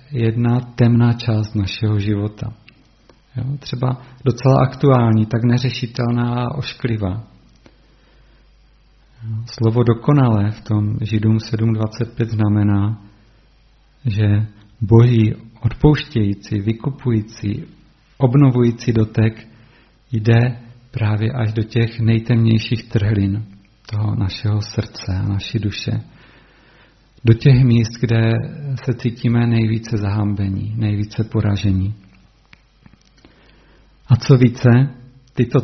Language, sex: Czech, male